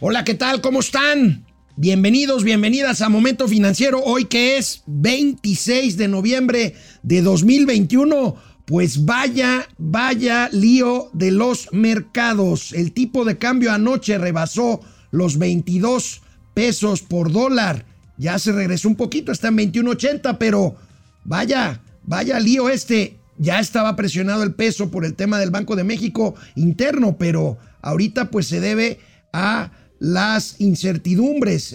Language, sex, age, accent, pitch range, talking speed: Spanish, male, 50-69, Mexican, 180-240 Hz, 130 wpm